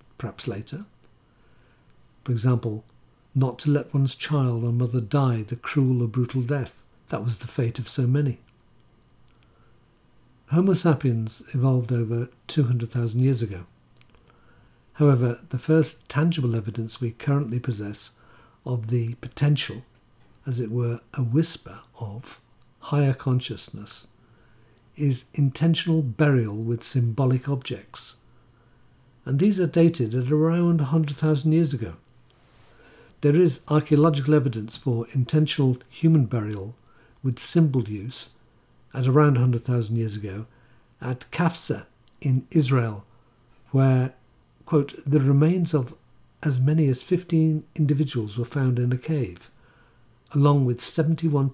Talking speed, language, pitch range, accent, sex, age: 120 wpm, English, 120-145 Hz, British, male, 50-69